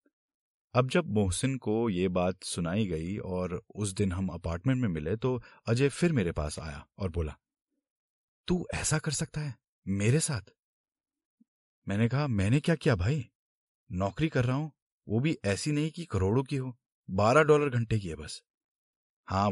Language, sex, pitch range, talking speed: Hindi, male, 95-155 Hz, 170 wpm